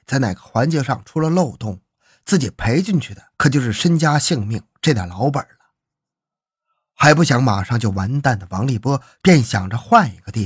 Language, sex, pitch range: Chinese, male, 110-160 Hz